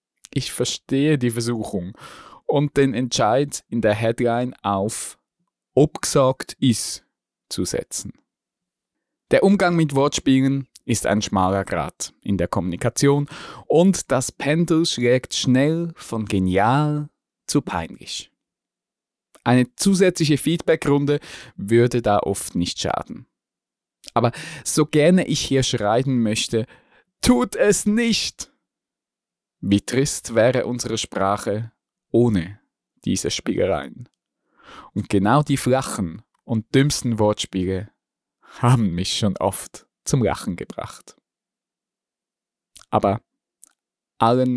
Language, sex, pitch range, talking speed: German, male, 105-140 Hz, 105 wpm